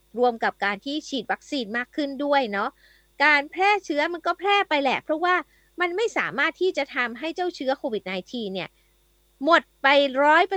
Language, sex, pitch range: Thai, female, 215-300 Hz